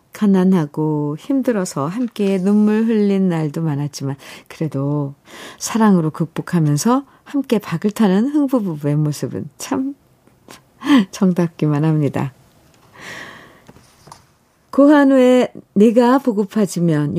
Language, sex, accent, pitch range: Korean, female, native, 170-240 Hz